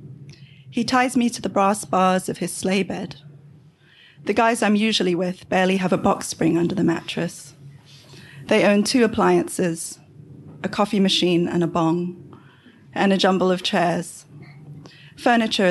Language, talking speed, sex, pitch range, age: English, 155 wpm, female, 150-195 Hz, 30-49